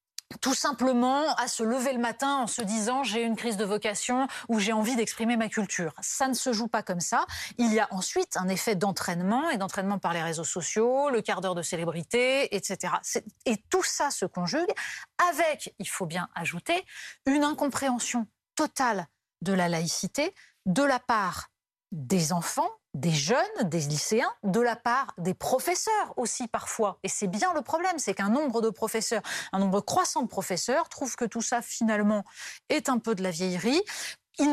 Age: 30-49